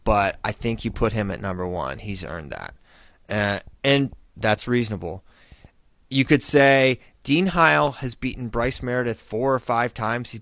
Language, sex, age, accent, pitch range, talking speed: English, male, 30-49, American, 105-130 Hz, 175 wpm